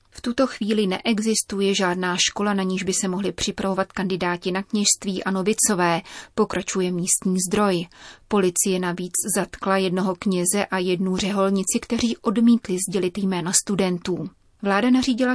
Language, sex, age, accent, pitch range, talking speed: Czech, female, 30-49, native, 185-215 Hz, 135 wpm